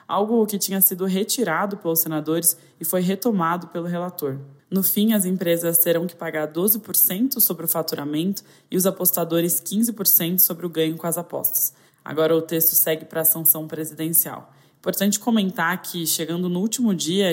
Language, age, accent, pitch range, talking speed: Portuguese, 20-39, Brazilian, 155-185 Hz, 165 wpm